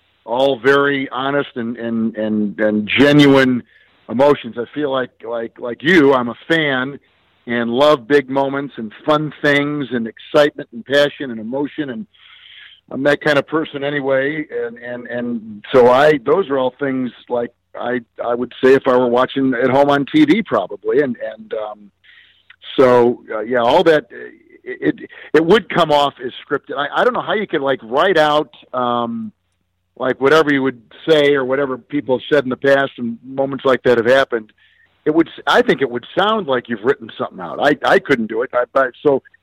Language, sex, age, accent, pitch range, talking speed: English, male, 50-69, American, 120-145 Hz, 195 wpm